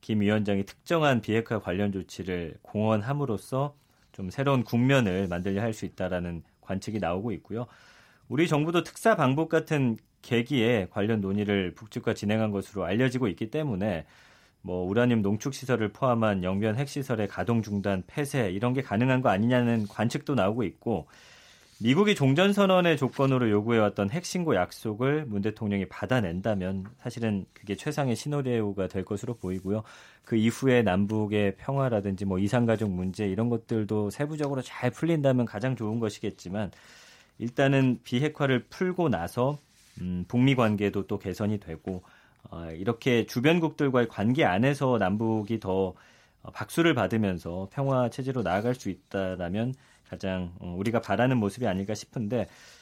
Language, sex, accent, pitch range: Korean, male, native, 100-135 Hz